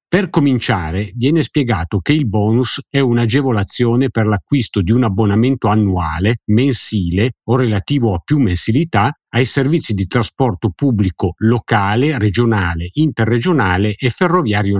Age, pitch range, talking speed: 50-69, 100-135 Hz, 125 wpm